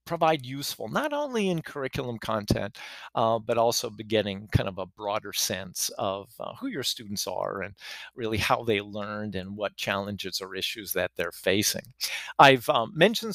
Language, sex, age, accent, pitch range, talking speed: English, male, 40-59, American, 105-135 Hz, 175 wpm